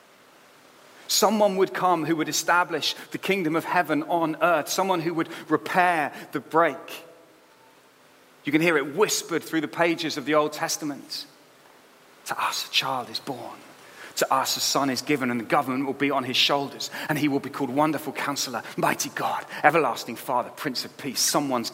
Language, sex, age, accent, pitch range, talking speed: English, male, 30-49, British, 150-195 Hz, 180 wpm